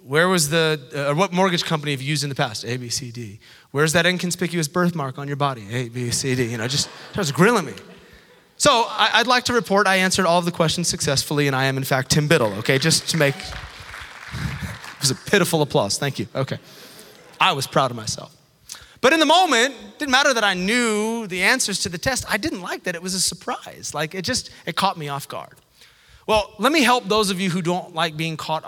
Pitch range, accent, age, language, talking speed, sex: 140-190 Hz, American, 30-49, English, 245 wpm, male